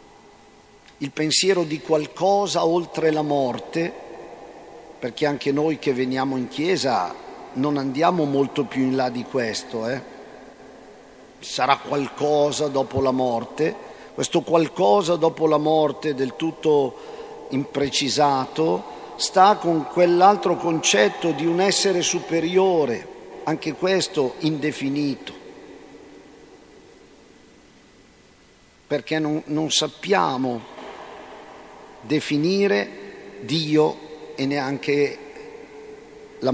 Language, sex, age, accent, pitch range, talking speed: Italian, male, 50-69, native, 140-170 Hz, 90 wpm